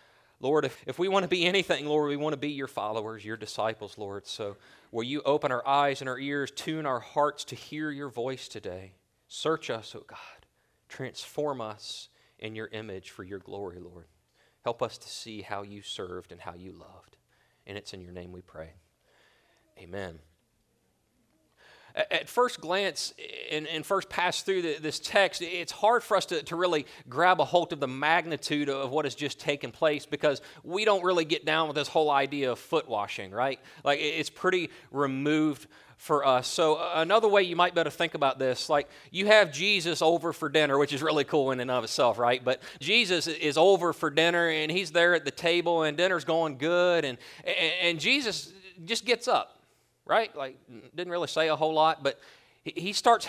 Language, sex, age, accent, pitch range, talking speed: English, male, 30-49, American, 135-175 Hz, 195 wpm